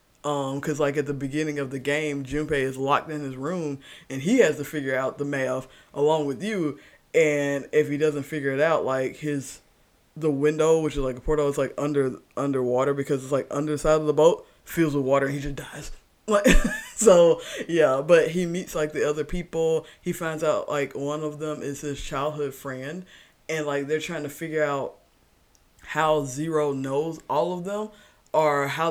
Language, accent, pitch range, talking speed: English, American, 140-160 Hz, 200 wpm